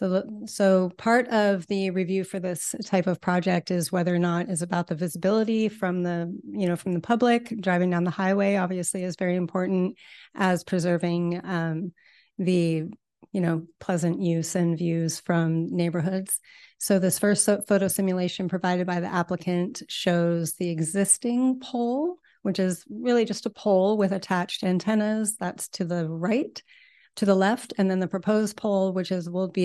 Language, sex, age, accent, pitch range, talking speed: English, female, 30-49, American, 175-205 Hz, 170 wpm